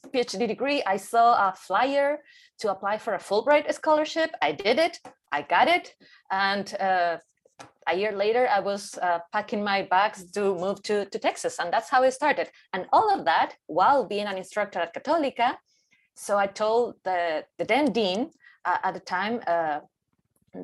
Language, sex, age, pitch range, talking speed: English, female, 20-39, 190-260 Hz, 175 wpm